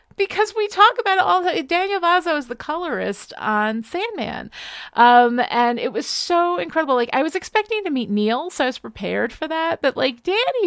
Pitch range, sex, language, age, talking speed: 200-285 Hz, female, English, 30-49, 210 wpm